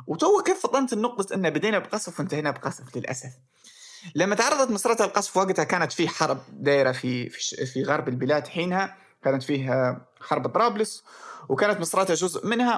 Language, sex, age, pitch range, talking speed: Arabic, male, 20-39, 145-225 Hz, 150 wpm